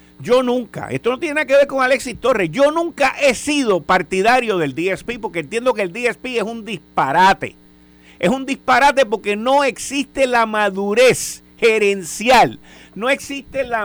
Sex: male